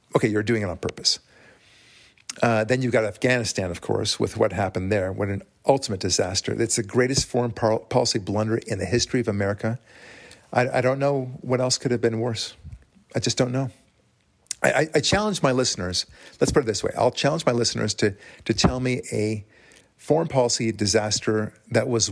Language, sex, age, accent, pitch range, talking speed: English, male, 50-69, American, 105-125 Hz, 195 wpm